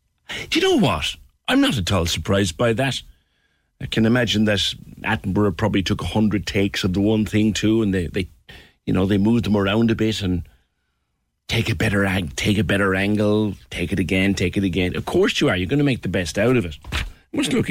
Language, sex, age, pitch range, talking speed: English, male, 50-69, 90-120 Hz, 225 wpm